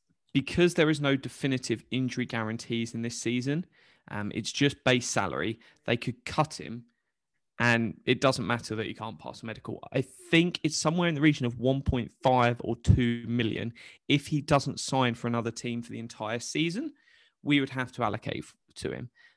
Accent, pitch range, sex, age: British, 115-140 Hz, male, 20-39